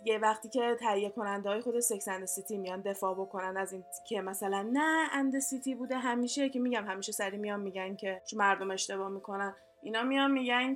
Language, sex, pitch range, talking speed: Persian, female, 210-265 Hz, 190 wpm